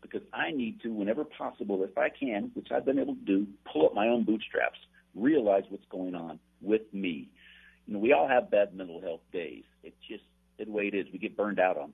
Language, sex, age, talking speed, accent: English, male, 50-69, 230 wpm, American